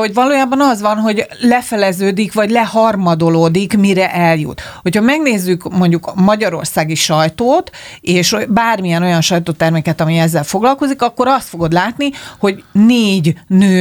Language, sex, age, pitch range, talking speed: Hungarian, female, 40-59, 165-215 Hz, 130 wpm